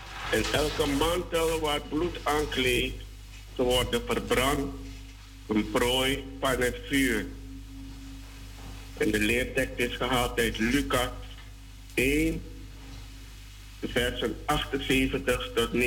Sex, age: male, 60-79